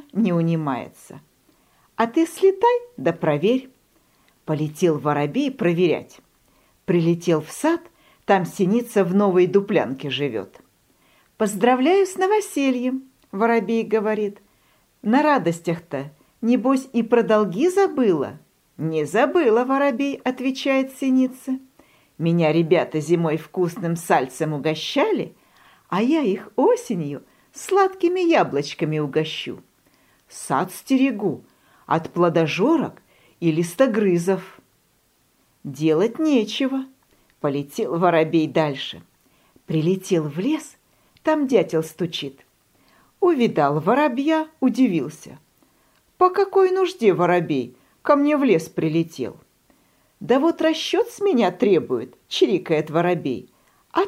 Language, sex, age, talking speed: Russian, female, 50-69, 95 wpm